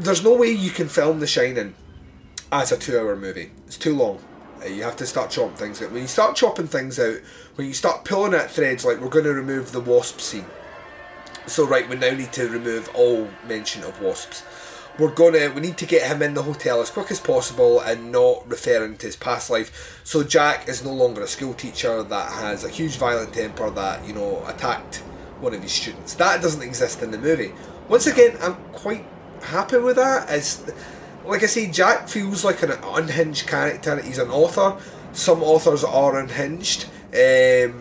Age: 30-49